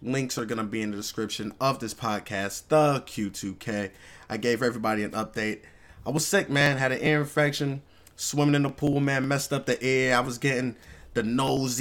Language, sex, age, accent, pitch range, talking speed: English, male, 20-39, American, 100-130 Hz, 205 wpm